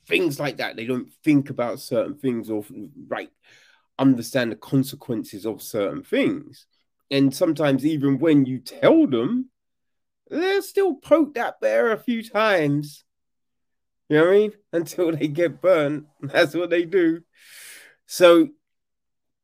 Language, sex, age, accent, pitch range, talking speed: English, male, 30-49, British, 130-165 Hz, 140 wpm